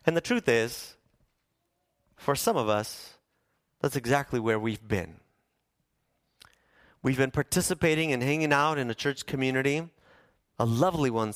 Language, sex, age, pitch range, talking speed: English, male, 30-49, 110-140 Hz, 135 wpm